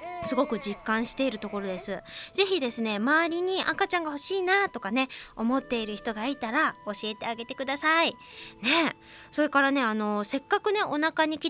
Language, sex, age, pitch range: Japanese, female, 20-39, 210-300 Hz